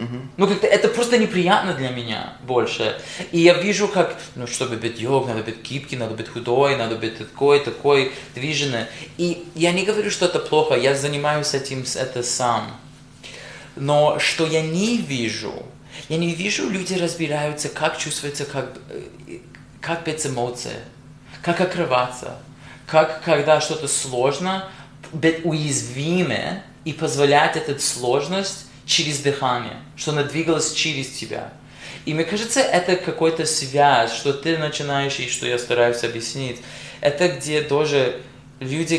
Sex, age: male, 20-39